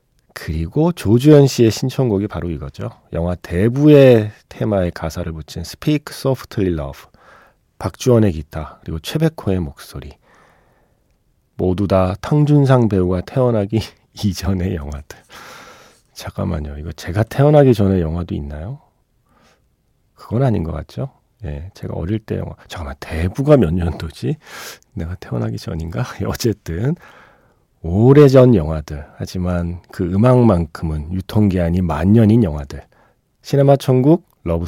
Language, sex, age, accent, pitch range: Korean, male, 40-59, native, 80-120 Hz